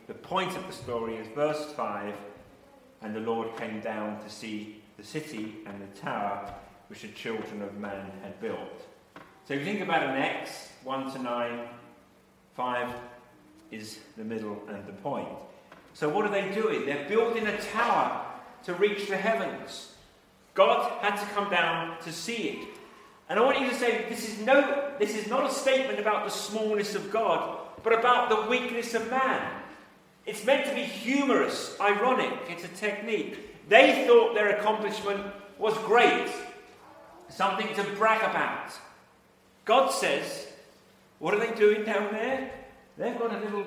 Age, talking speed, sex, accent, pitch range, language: 40-59, 165 wpm, male, British, 150-230 Hz, English